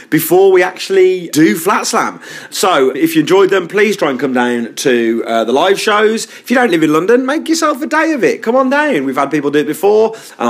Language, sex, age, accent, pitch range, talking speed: English, male, 40-59, British, 130-220 Hz, 245 wpm